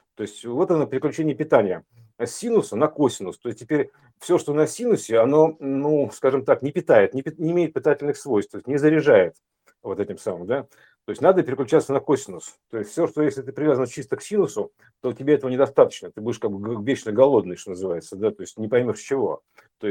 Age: 50-69